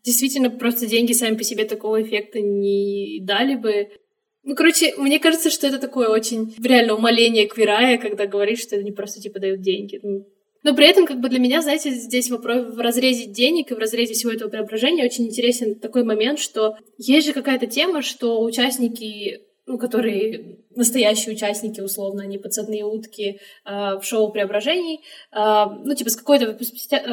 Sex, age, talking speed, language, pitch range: female, 10-29, 175 wpm, Russian, 215-260 Hz